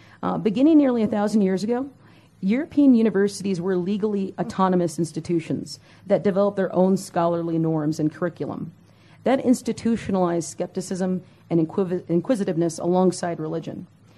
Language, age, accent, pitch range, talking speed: English, 40-59, American, 170-205 Hz, 120 wpm